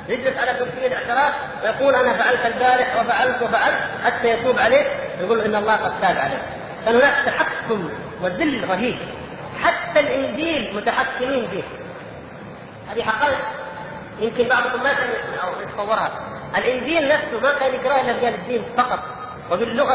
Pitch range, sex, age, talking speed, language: 220-275 Hz, female, 40-59, 130 wpm, Arabic